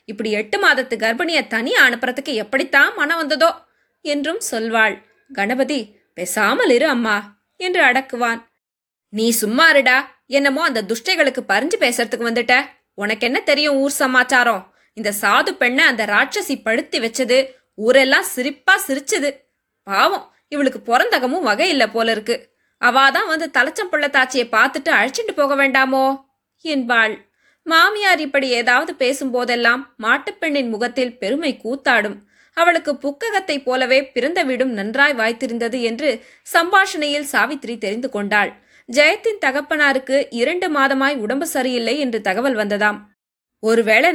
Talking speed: 115 wpm